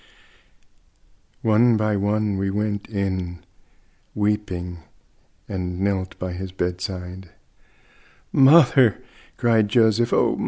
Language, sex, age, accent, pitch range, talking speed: English, male, 50-69, American, 95-110 Hz, 90 wpm